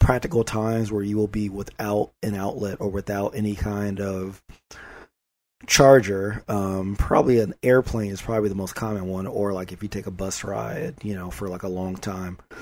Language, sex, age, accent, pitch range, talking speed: English, male, 30-49, American, 95-115 Hz, 190 wpm